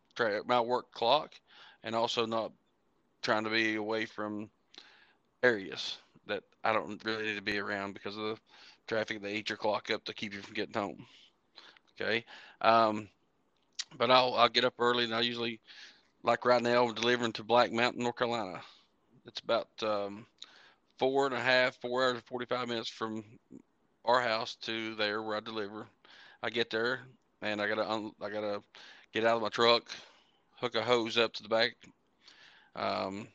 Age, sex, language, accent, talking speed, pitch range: 40-59, male, English, American, 175 wpm, 105-120 Hz